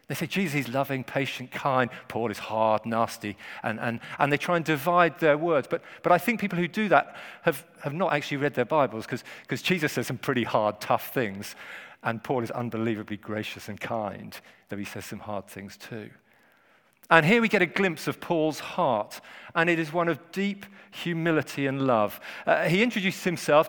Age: 40-59